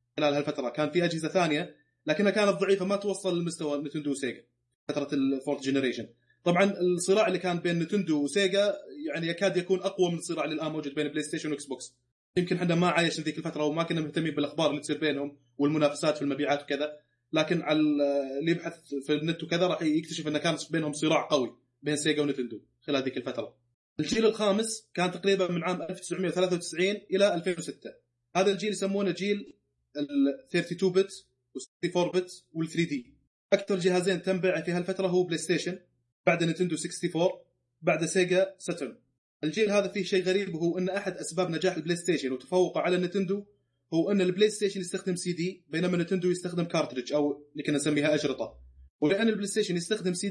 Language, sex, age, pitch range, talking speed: Arabic, male, 20-39, 145-185 Hz, 175 wpm